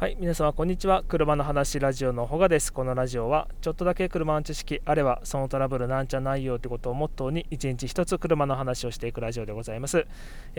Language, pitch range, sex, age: Japanese, 120-160 Hz, male, 20-39